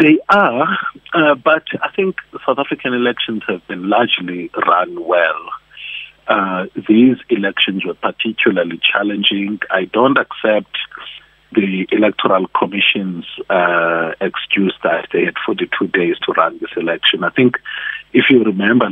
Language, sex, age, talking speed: English, male, 50-69, 135 wpm